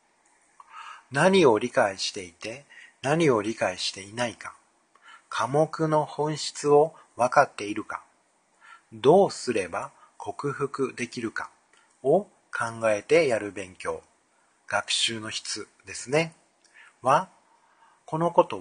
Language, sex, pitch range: Japanese, male, 120-160 Hz